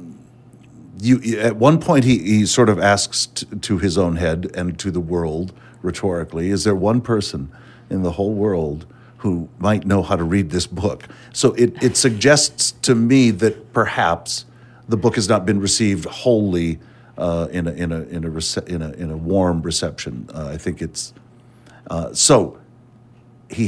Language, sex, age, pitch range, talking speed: English, male, 50-69, 85-120 Hz, 175 wpm